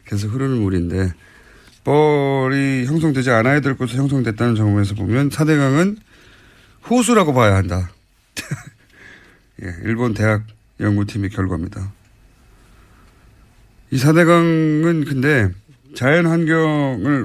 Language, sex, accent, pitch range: Korean, male, native, 100-140 Hz